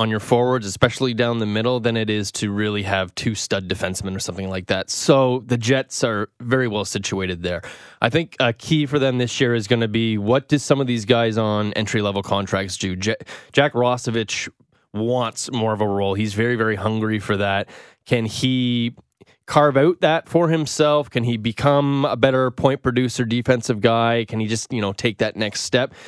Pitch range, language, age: 105-130 Hz, English, 20-39